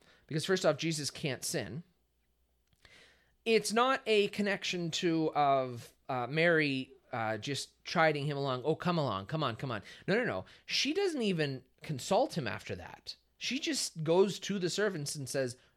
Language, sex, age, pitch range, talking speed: English, male, 30-49, 100-160 Hz, 170 wpm